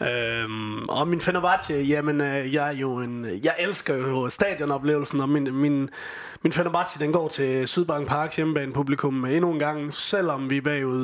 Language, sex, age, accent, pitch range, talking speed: Danish, male, 20-39, native, 140-160 Hz, 185 wpm